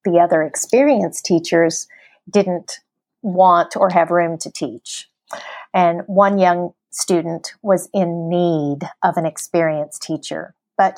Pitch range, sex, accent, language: 170-200 Hz, female, American, English